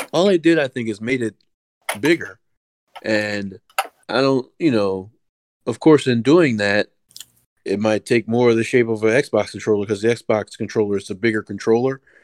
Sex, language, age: male, English, 30-49